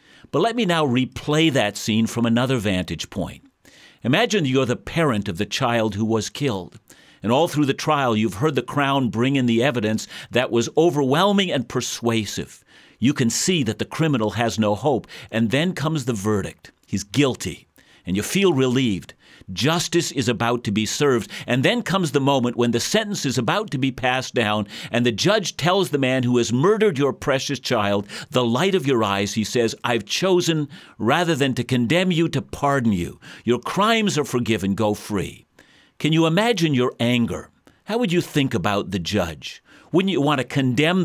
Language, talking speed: English, 190 wpm